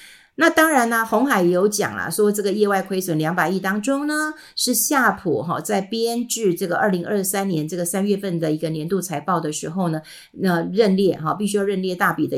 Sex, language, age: female, Chinese, 50-69